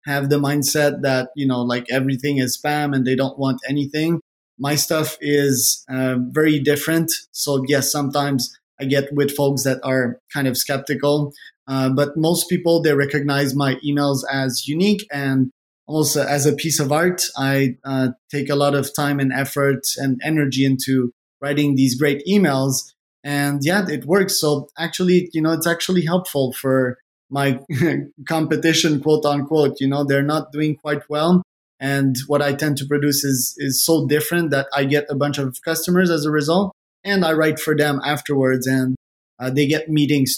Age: 20-39